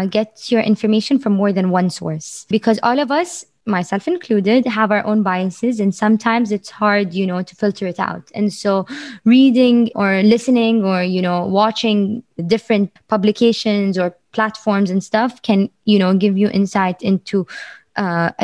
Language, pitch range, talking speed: English, 185-215 Hz, 165 wpm